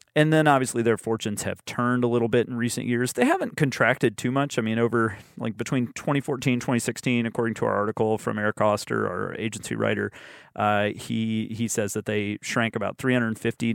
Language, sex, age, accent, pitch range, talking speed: English, male, 30-49, American, 110-125 Hz, 190 wpm